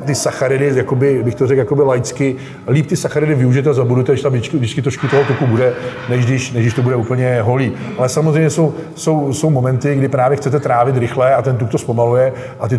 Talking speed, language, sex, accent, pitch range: 210 wpm, Czech, male, native, 120-135 Hz